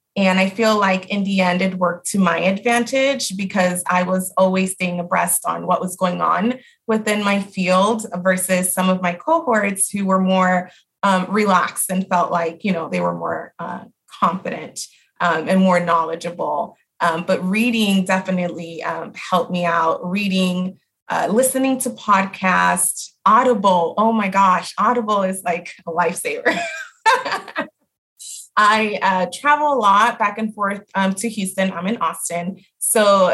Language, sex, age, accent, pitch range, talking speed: English, female, 20-39, American, 180-215 Hz, 155 wpm